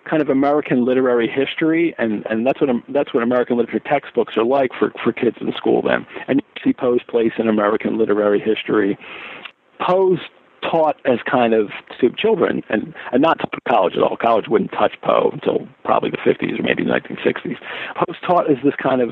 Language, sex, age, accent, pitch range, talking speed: English, male, 50-69, American, 120-150 Hz, 200 wpm